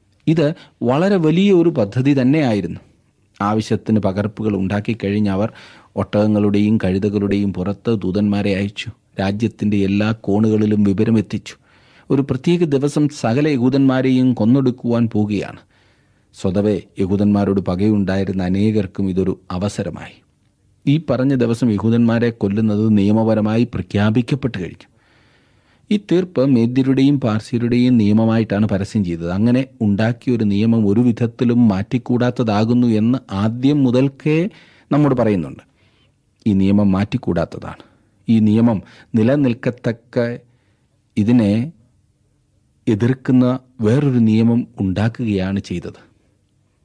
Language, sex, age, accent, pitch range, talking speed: Malayalam, male, 40-59, native, 100-130 Hz, 90 wpm